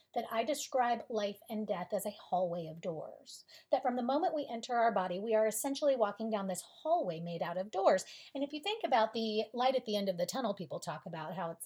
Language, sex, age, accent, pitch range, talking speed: English, female, 40-59, American, 210-310 Hz, 245 wpm